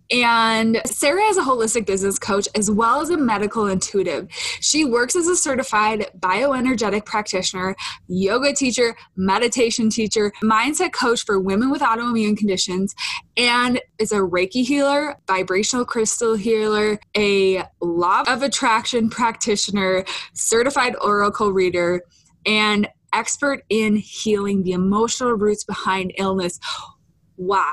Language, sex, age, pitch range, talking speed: English, female, 20-39, 185-240 Hz, 125 wpm